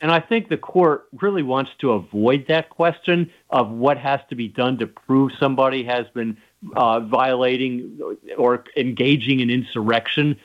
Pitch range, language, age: 125-150 Hz, English, 50-69